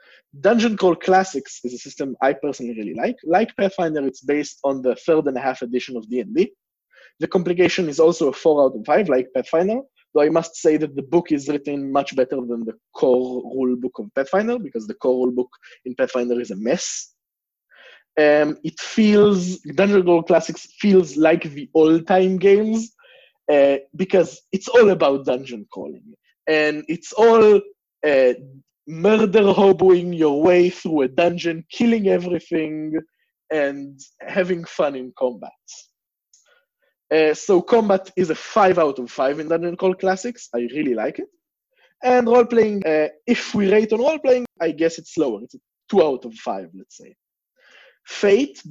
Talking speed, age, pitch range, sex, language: 170 wpm, 20-39, 140-195 Hz, male, English